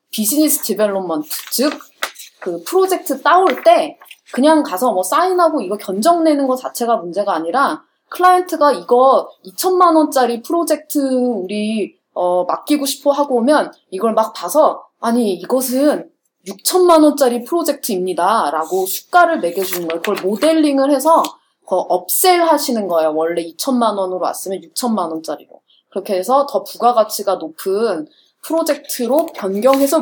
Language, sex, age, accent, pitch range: Korean, female, 20-39, native, 195-305 Hz